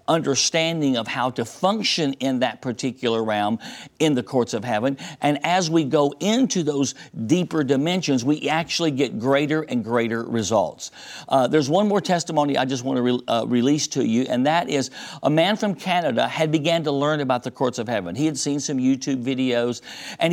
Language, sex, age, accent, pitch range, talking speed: English, male, 50-69, American, 135-175 Hz, 190 wpm